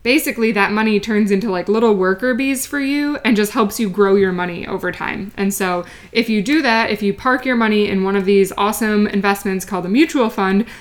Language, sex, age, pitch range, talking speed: English, female, 20-39, 195-225 Hz, 230 wpm